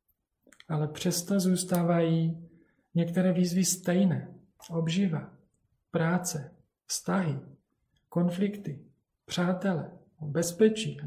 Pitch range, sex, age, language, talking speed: 150-175 Hz, male, 40-59, Czech, 70 wpm